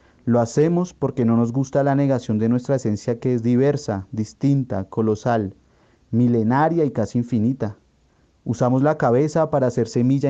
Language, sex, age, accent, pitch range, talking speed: Spanish, male, 30-49, Colombian, 110-135 Hz, 150 wpm